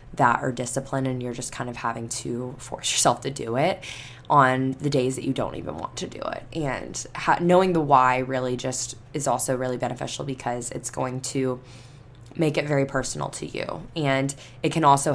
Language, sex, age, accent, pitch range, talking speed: English, female, 10-29, American, 125-150 Hz, 200 wpm